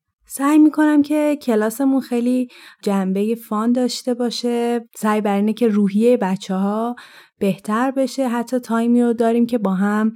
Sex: female